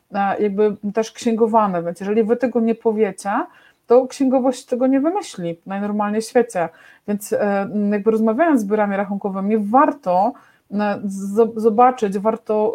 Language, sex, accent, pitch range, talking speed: Polish, female, native, 195-235 Hz, 120 wpm